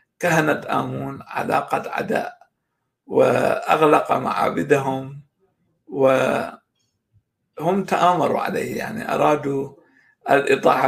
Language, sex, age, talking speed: Arabic, male, 60-79, 65 wpm